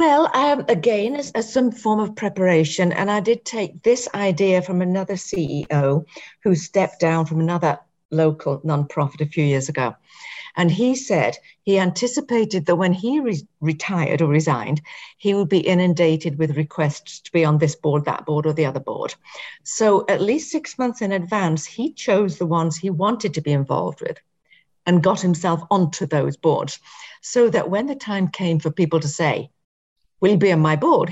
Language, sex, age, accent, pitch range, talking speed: English, female, 50-69, British, 155-210 Hz, 185 wpm